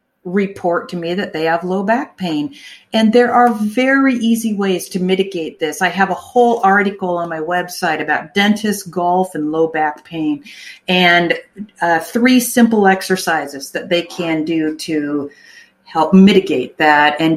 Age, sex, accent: 50-69, female, American